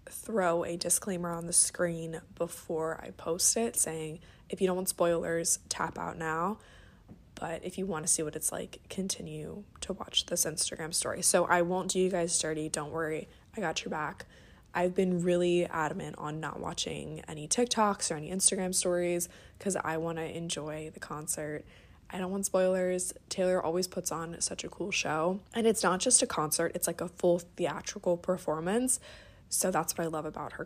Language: English